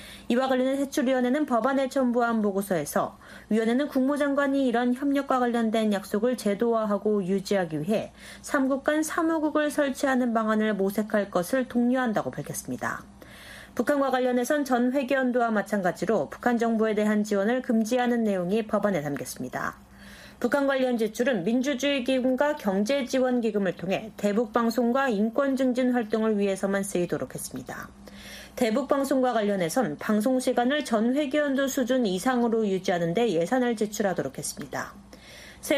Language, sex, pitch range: Korean, female, 210-270 Hz